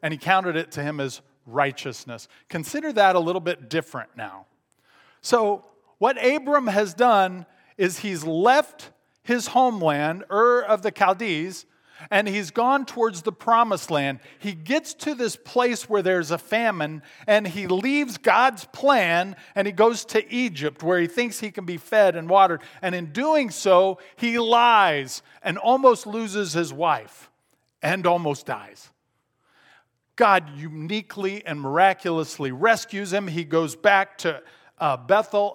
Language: English